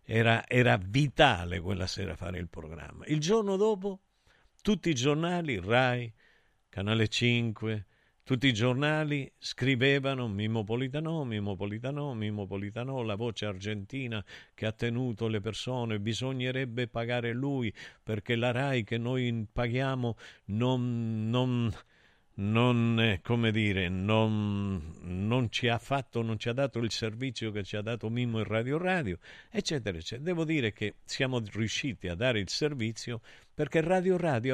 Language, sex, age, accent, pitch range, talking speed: Italian, male, 50-69, native, 105-130 Hz, 135 wpm